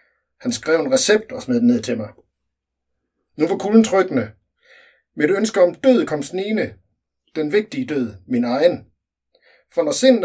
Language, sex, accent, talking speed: Danish, male, native, 165 wpm